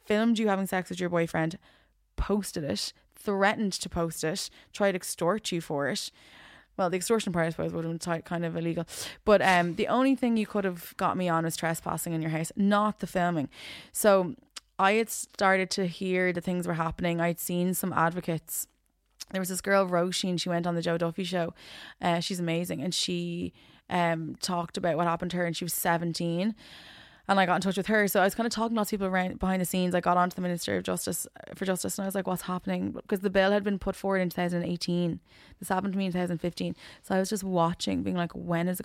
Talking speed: 245 wpm